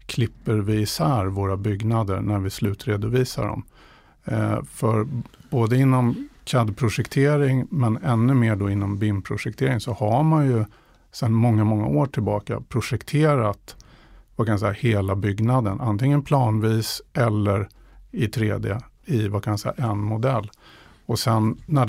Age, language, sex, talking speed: 50-69, Swedish, male, 135 wpm